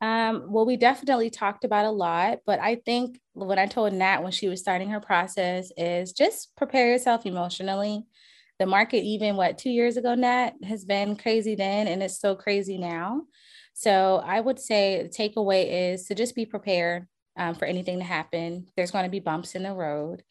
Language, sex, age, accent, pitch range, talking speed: English, female, 20-39, American, 180-240 Hz, 200 wpm